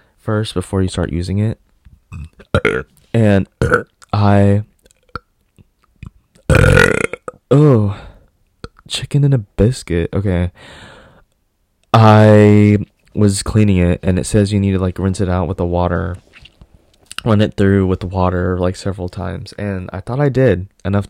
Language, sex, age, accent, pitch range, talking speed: English, male, 20-39, American, 90-105 Hz, 130 wpm